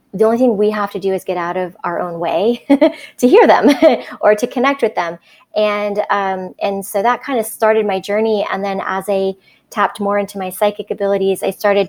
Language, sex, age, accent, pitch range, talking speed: English, female, 20-39, American, 180-205 Hz, 220 wpm